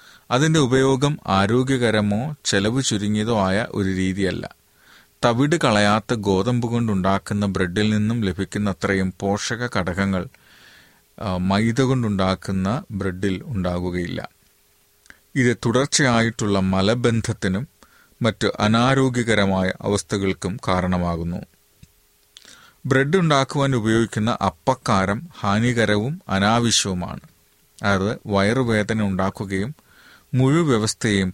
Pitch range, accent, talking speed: 95-120 Hz, native, 75 wpm